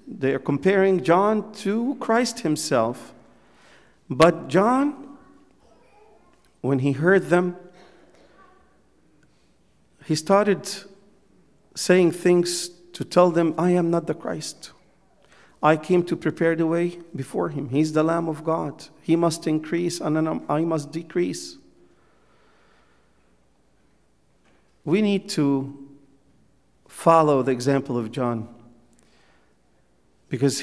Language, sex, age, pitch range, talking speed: English, male, 50-69, 135-180 Hz, 105 wpm